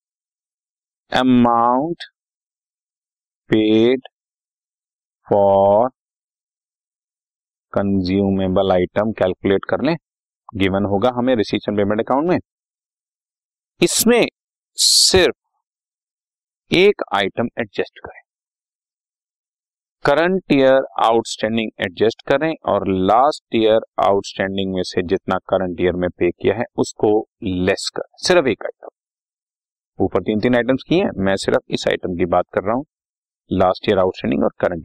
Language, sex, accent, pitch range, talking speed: Hindi, male, native, 95-135 Hz, 110 wpm